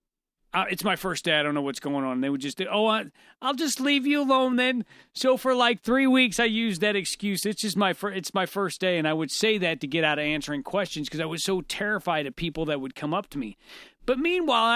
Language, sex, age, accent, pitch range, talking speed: English, male, 40-59, American, 155-225 Hz, 260 wpm